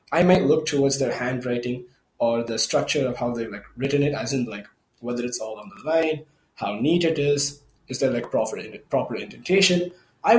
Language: English